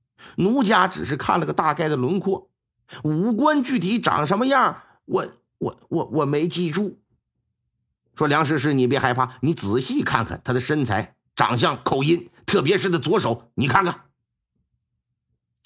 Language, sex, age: Chinese, male, 50-69